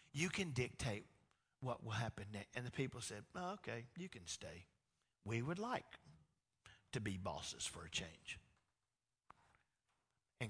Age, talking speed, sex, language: 50-69, 145 wpm, male, English